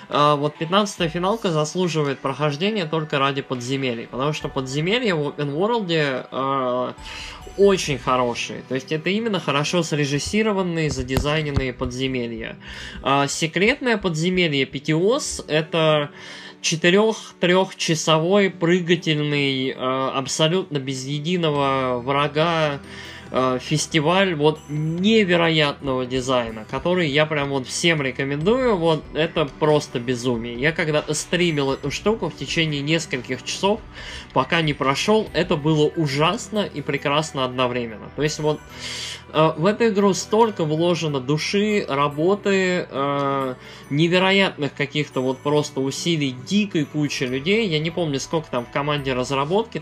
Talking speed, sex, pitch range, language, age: 120 wpm, male, 135-175 Hz, Russian, 20-39